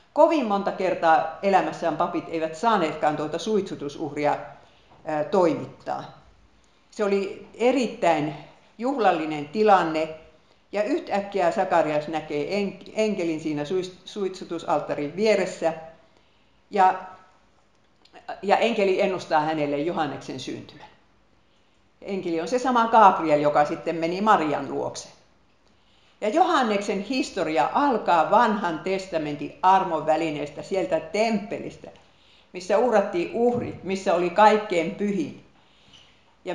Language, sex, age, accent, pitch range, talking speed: Finnish, female, 50-69, native, 160-210 Hz, 95 wpm